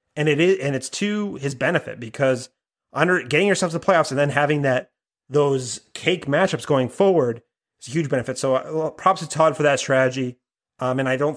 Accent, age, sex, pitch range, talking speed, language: American, 30-49, male, 130-160 Hz, 205 wpm, English